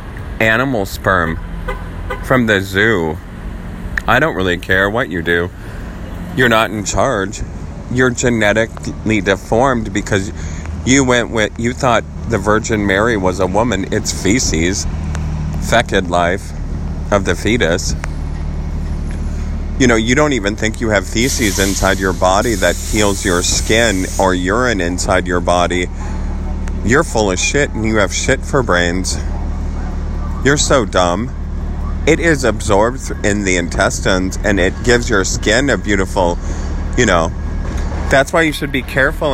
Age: 30-49